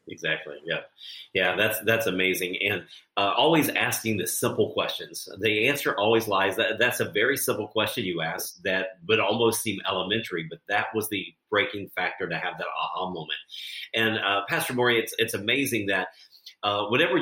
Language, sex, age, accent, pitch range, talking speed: English, male, 40-59, American, 100-120 Hz, 180 wpm